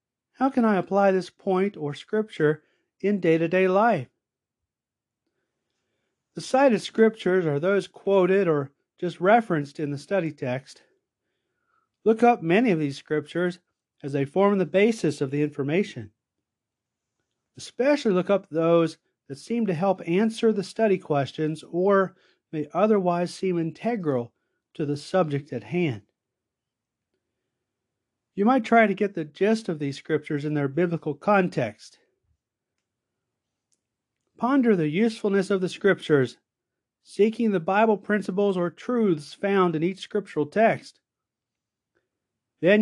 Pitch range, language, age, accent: 145-205 Hz, English, 40-59, American